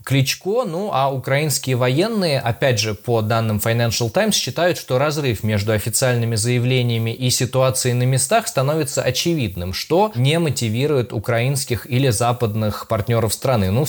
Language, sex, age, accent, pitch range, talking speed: Russian, male, 20-39, native, 110-135 Hz, 145 wpm